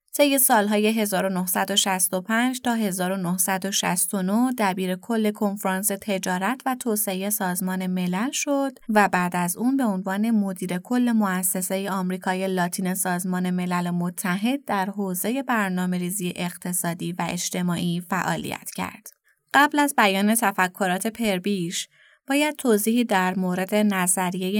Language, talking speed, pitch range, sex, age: Persian, 115 wpm, 185-230 Hz, female, 20-39